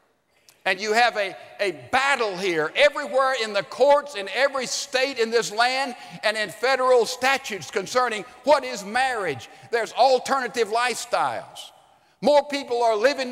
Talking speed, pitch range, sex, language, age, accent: 145 wpm, 195-260 Hz, male, English, 50-69, American